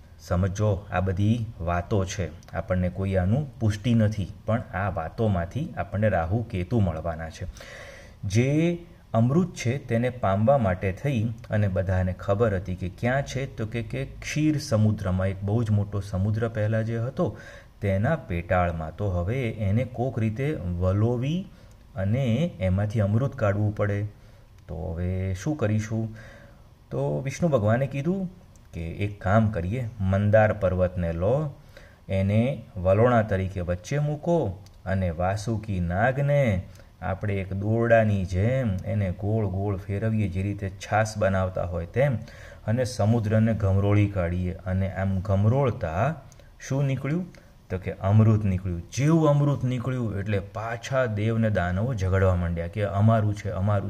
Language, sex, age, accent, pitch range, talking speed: Gujarati, male, 30-49, native, 95-115 Hz, 130 wpm